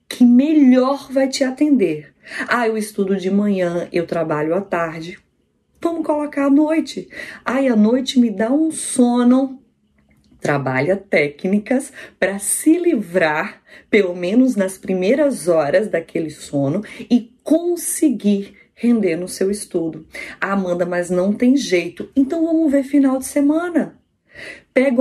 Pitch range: 185-260 Hz